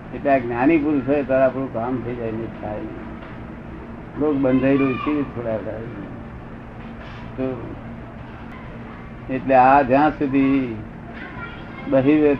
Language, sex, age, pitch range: Gujarati, male, 60-79, 115-140 Hz